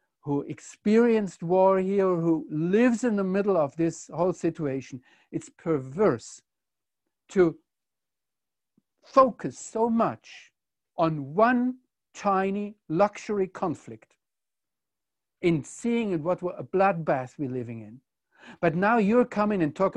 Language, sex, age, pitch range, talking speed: English, male, 60-79, 165-235 Hz, 115 wpm